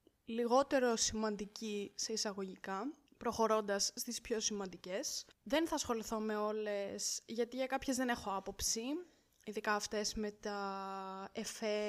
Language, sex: Greek, female